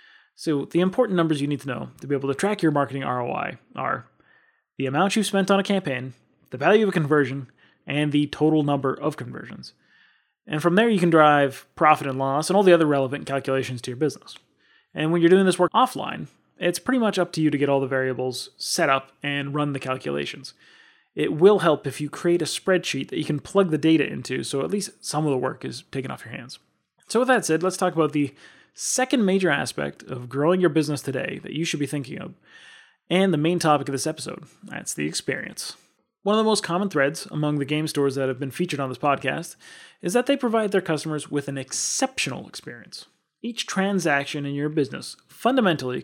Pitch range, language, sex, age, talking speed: 140-185 Hz, English, male, 20-39, 220 wpm